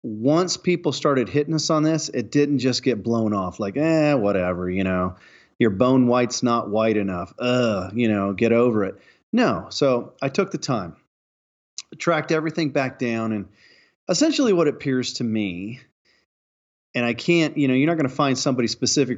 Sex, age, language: male, 40-59, English